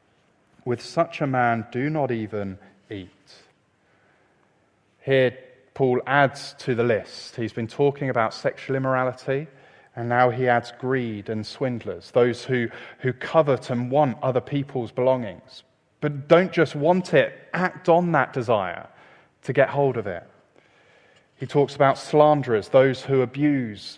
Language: English